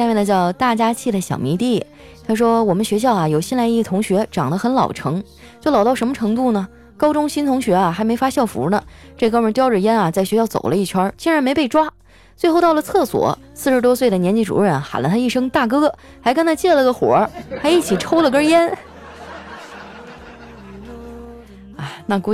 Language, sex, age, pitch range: Chinese, female, 20-39, 185-260 Hz